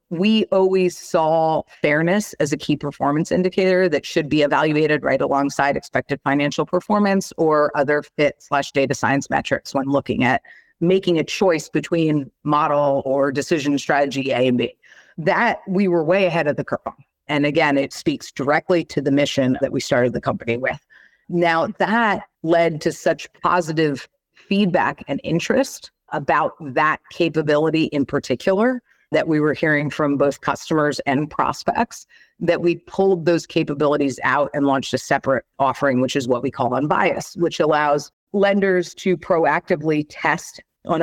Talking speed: 160 wpm